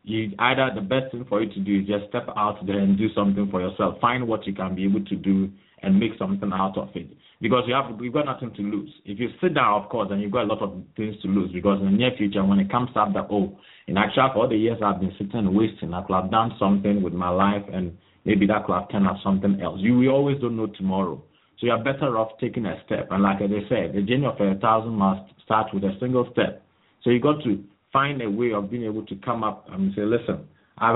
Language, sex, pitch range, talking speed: English, male, 100-120 Hz, 270 wpm